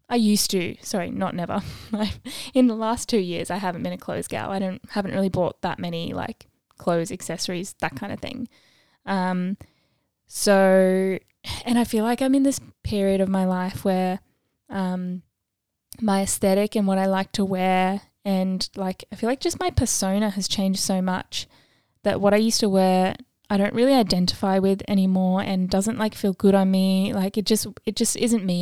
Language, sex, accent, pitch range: English, female, Australian, 185-215 Hz